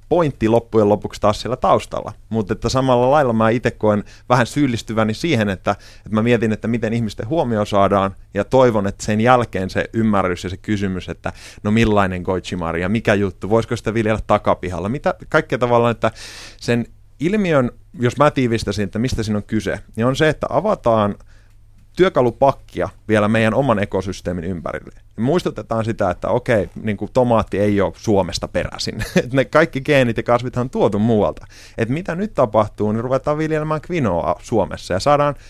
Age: 30-49